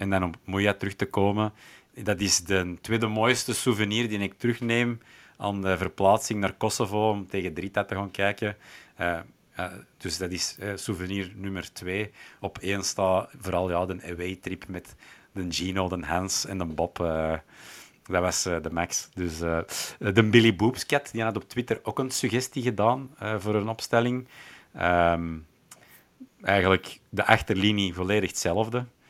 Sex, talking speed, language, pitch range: male, 170 wpm, Dutch, 90-115 Hz